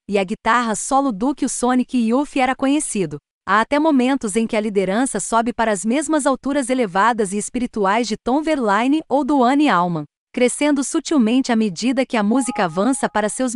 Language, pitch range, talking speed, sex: Portuguese, 205-260 Hz, 195 wpm, female